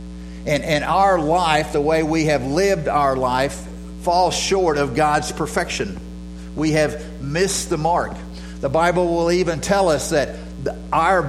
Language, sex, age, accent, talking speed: English, male, 50-69, American, 150 wpm